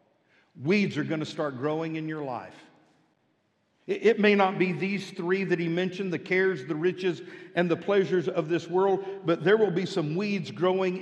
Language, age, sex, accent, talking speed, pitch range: English, 50-69, male, American, 190 wpm, 165-200 Hz